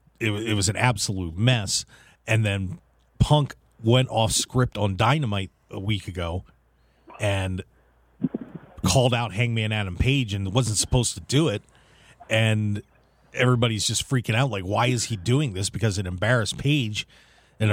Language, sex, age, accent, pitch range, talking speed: English, male, 40-59, American, 105-140 Hz, 150 wpm